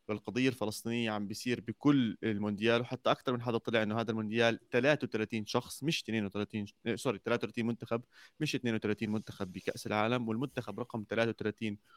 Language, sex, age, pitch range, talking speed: Arabic, male, 30-49, 110-130 Hz, 145 wpm